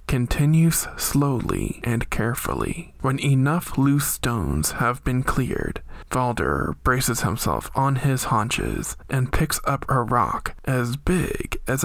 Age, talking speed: 20-39, 125 wpm